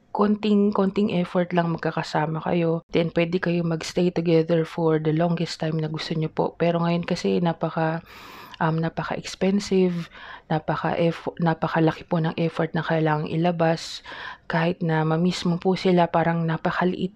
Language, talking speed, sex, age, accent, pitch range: Filipino, 145 wpm, female, 20-39, native, 160-175 Hz